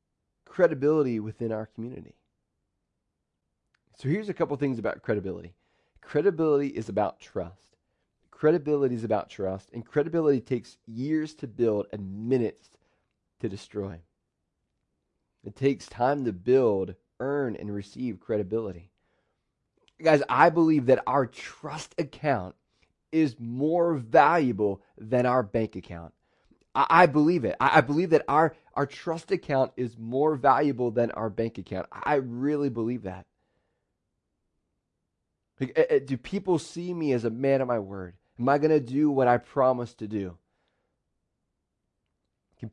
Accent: American